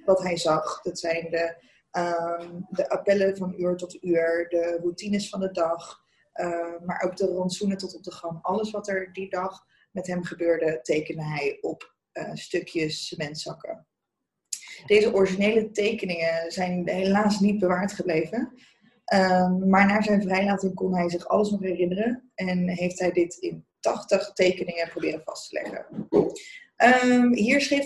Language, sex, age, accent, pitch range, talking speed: Dutch, female, 20-39, Dutch, 170-210 Hz, 160 wpm